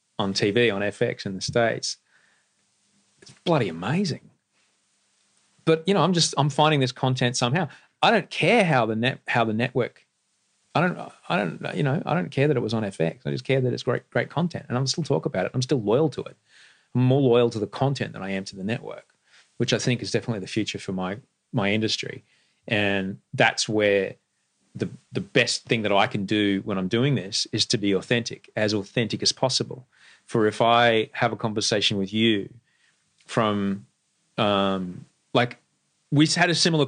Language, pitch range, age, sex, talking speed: English, 100-125 Hz, 30-49, male, 200 wpm